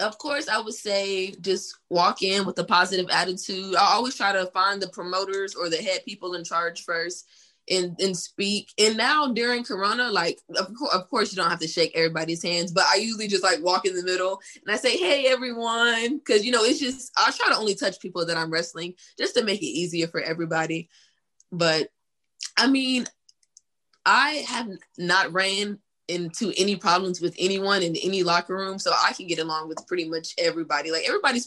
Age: 20-39